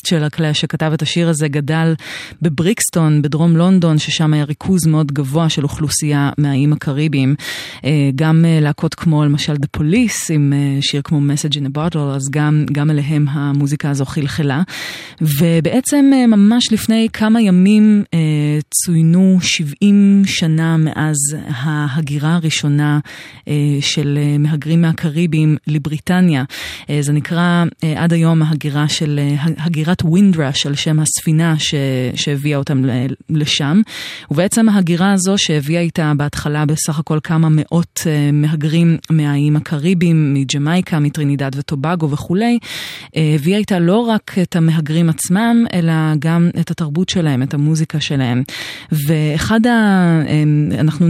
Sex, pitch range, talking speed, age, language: female, 150-170 Hz, 120 wpm, 30-49, Hebrew